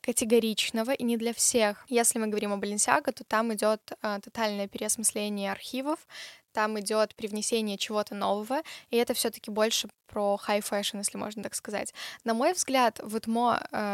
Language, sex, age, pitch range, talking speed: Russian, female, 10-29, 210-245 Hz, 165 wpm